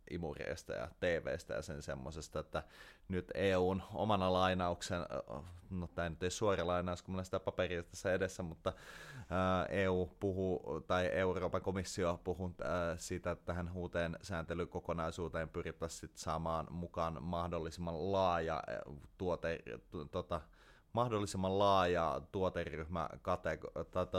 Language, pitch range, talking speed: Finnish, 80-90 Hz, 120 wpm